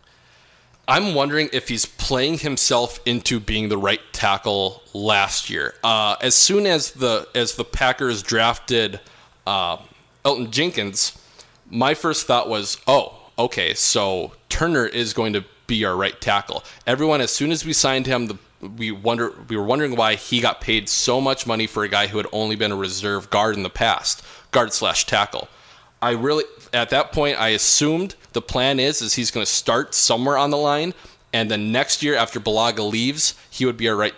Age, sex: 20-39, male